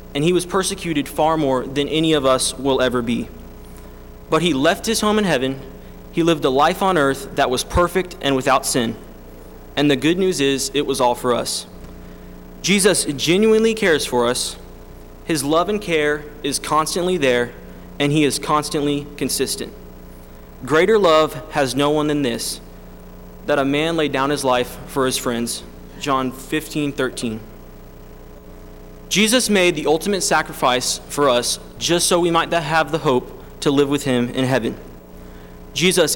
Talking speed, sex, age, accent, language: 165 wpm, male, 20-39, American, English